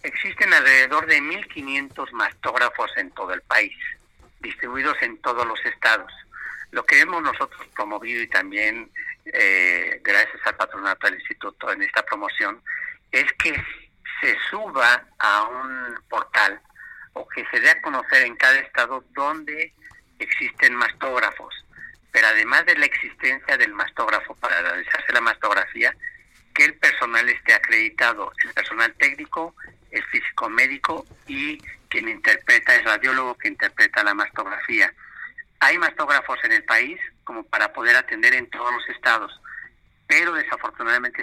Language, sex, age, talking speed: Spanish, male, 50-69, 140 wpm